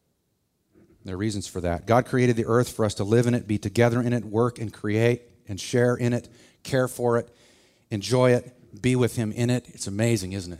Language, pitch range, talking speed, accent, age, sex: English, 100-120 Hz, 220 wpm, American, 40-59, male